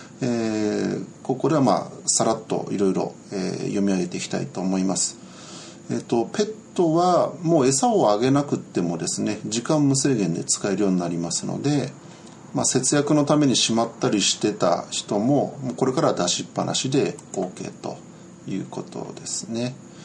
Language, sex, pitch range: Japanese, male, 105-165 Hz